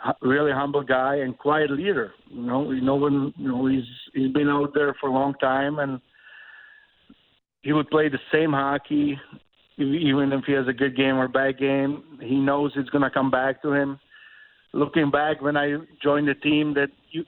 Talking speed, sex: 200 wpm, male